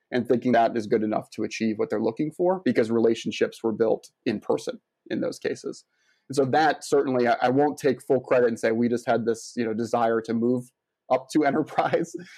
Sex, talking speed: male, 210 wpm